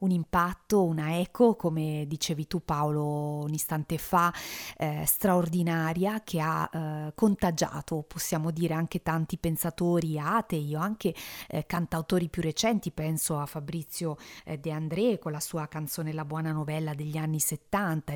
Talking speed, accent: 150 wpm, native